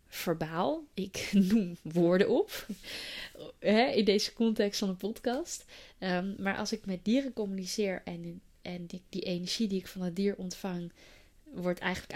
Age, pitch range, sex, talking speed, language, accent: 20-39, 180-235 Hz, female, 160 wpm, Dutch, Dutch